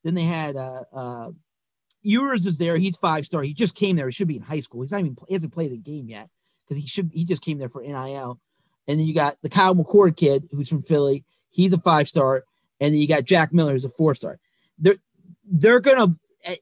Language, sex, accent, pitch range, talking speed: English, male, American, 145-185 Hz, 240 wpm